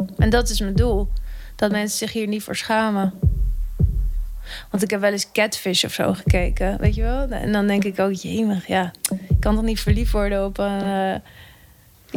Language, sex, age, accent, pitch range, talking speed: Dutch, female, 20-39, Dutch, 195-260 Hz, 200 wpm